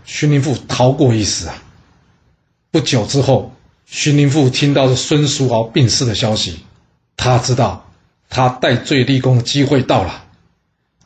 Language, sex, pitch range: Chinese, male, 110-135 Hz